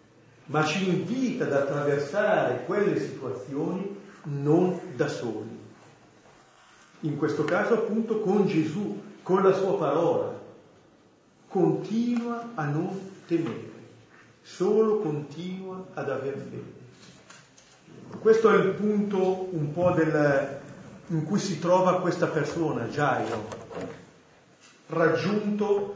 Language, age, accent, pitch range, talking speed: Italian, 50-69, native, 140-190 Hz, 100 wpm